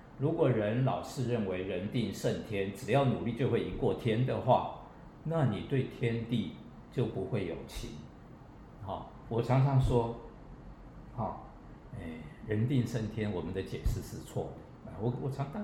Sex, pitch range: male, 105-125 Hz